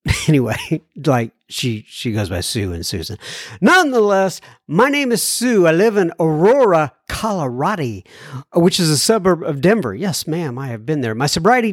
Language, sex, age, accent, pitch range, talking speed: English, male, 50-69, American, 140-195 Hz, 170 wpm